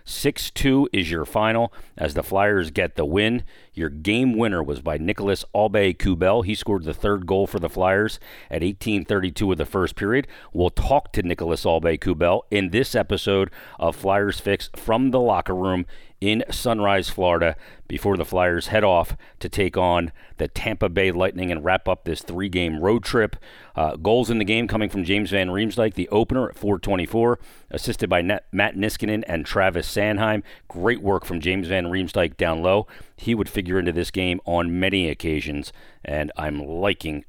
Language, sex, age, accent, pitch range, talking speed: English, male, 40-59, American, 85-105 Hz, 175 wpm